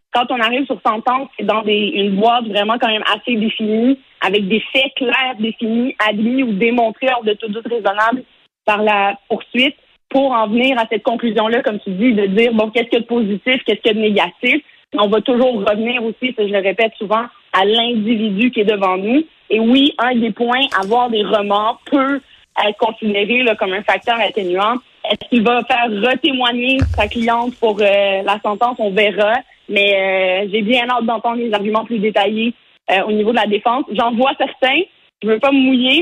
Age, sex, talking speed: 30-49, female, 205 wpm